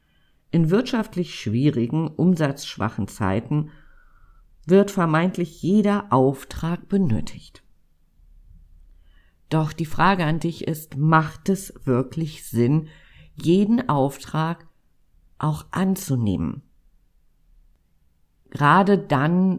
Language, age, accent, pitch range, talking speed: German, 50-69, German, 125-175 Hz, 80 wpm